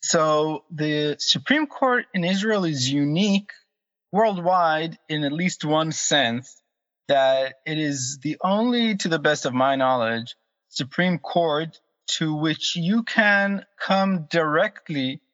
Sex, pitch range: male, 130-175 Hz